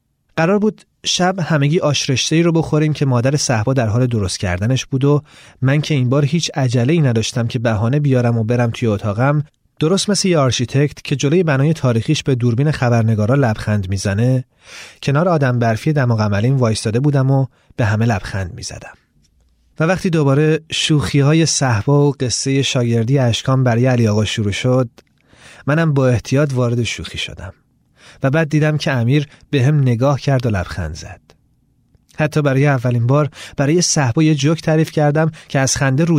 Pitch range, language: 120-150 Hz, Persian